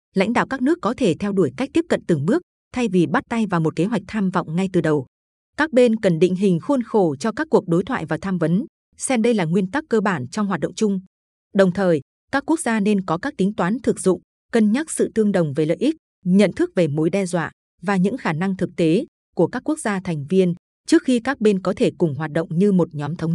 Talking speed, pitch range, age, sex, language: 265 wpm, 180-230 Hz, 20-39, female, Vietnamese